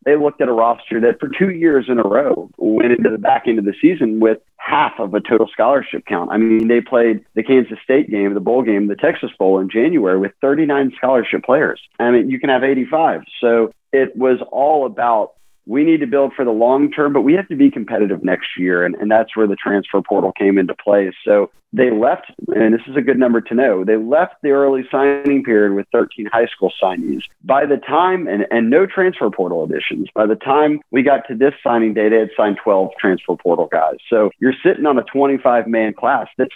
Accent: American